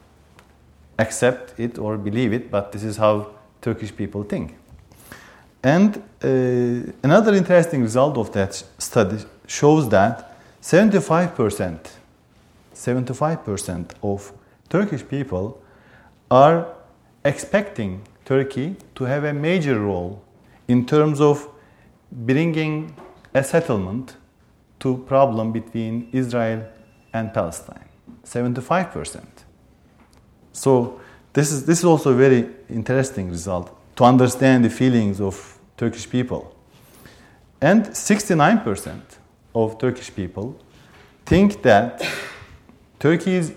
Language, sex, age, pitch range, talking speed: English, male, 40-59, 105-145 Hz, 100 wpm